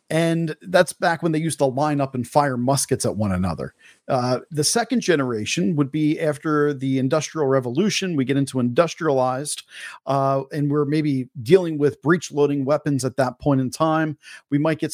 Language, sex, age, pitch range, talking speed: English, male, 40-59, 135-160 Hz, 185 wpm